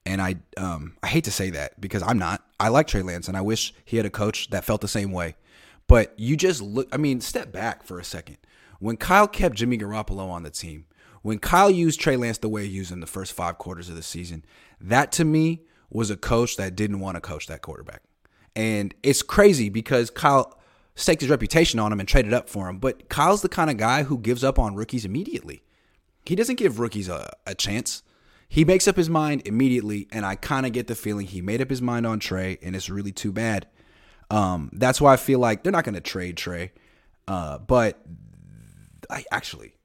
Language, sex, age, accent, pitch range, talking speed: English, male, 30-49, American, 95-135 Hz, 225 wpm